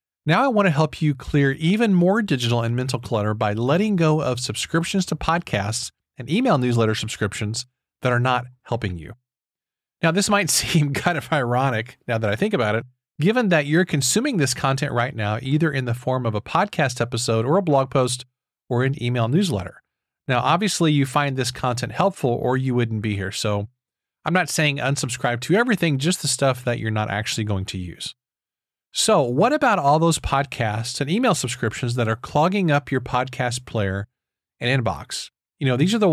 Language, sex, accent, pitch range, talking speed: English, male, American, 115-155 Hz, 195 wpm